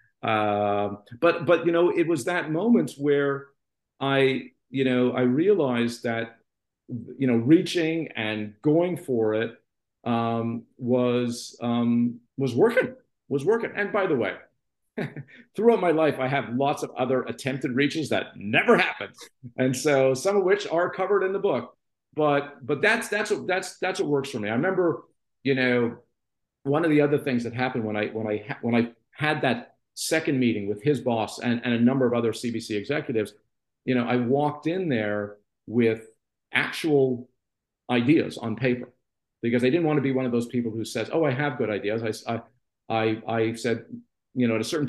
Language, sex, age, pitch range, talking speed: English, male, 50-69, 120-160 Hz, 180 wpm